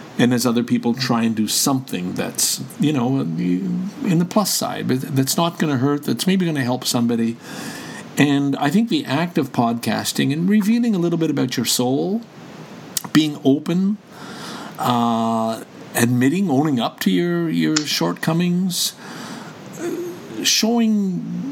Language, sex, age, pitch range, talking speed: English, male, 50-69, 115-165 Hz, 150 wpm